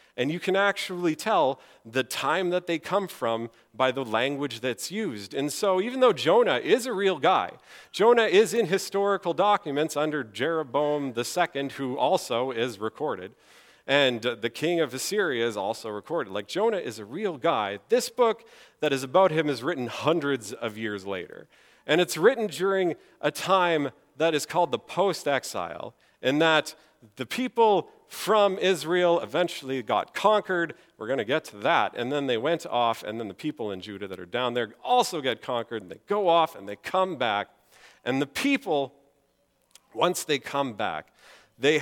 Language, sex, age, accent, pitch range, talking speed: English, male, 40-59, American, 120-185 Hz, 175 wpm